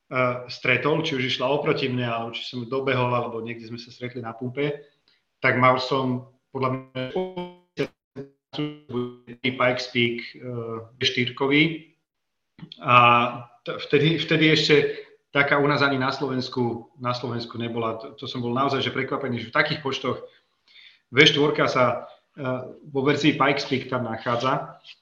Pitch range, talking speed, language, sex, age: 120-145 Hz, 140 wpm, Slovak, male, 30-49